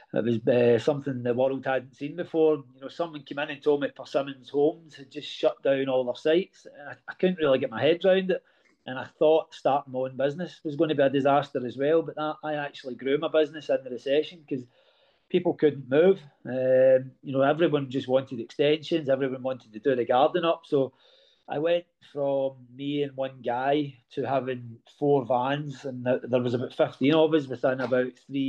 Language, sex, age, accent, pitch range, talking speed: English, male, 30-49, British, 125-150 Hz, 215 wpm